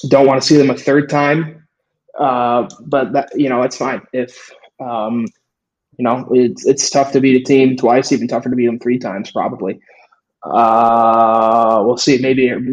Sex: male